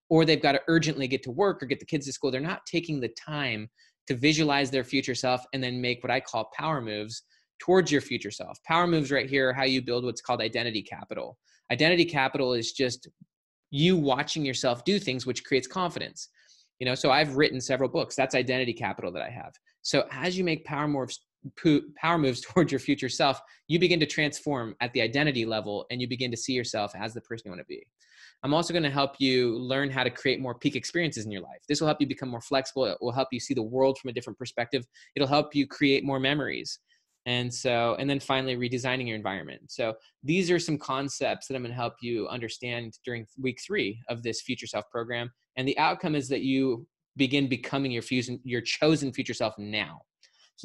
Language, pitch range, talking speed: English, 120-145 Hz, 225 wpm